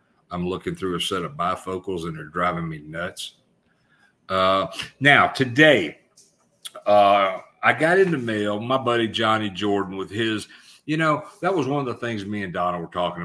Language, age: English, 50-69